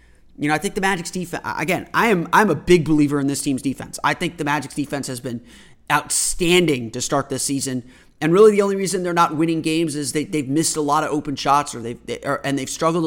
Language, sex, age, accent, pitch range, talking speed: English, male, 30-49, American, 140-170 Hz, 255 wpm